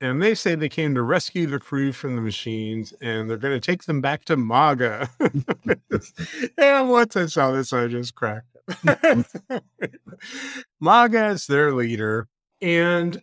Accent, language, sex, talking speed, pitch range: American, English, male, 160 wpm, 115-170 Hz